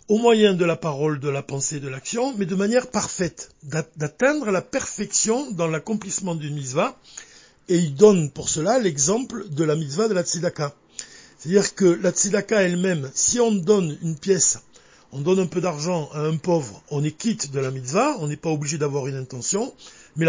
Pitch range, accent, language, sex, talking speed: 155-215 Hz, French, French, male, 190 wpm